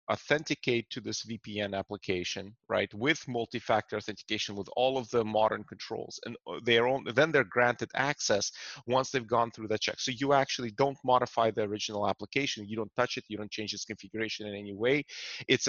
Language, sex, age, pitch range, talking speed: English, male, 30-49, 105-120 Hz, 185 wpm